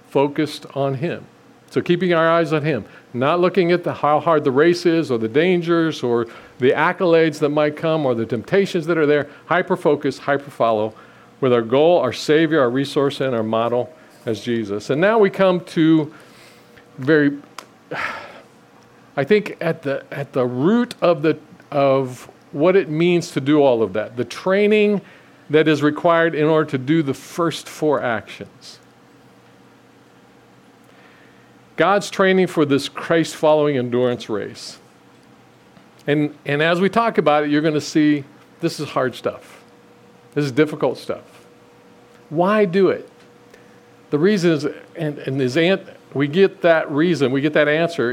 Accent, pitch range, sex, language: American, 140-170 Hz, male, English